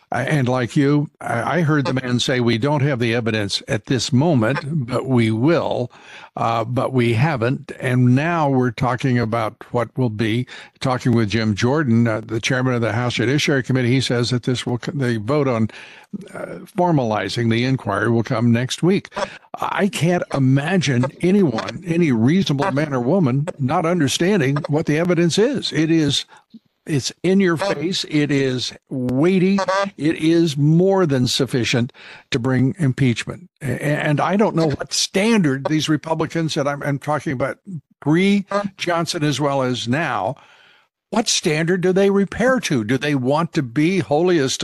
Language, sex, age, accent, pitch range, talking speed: English, male, 60-79, American, 125-175 Hz, 160 wpm